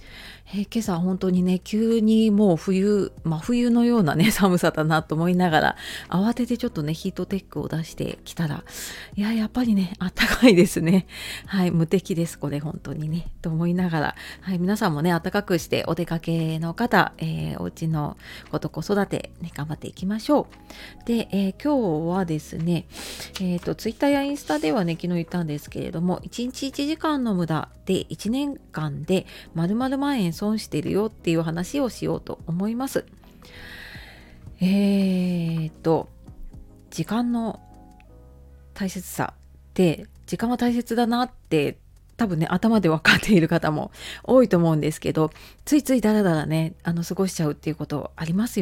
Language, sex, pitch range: Japanese, female, 160-210 Hz